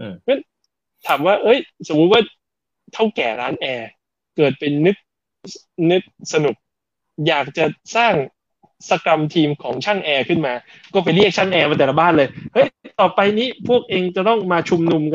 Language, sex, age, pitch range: Thai, male, 20-39, 145-195 Hz